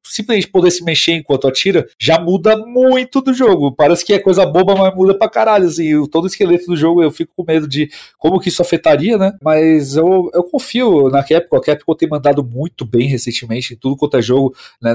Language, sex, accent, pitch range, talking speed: Portuguese, male, Brazilian, 125-165 Hz, 215 wpm